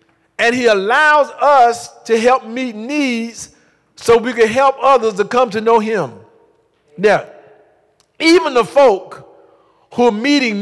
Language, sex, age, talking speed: English, male, 50-69, 140 wpm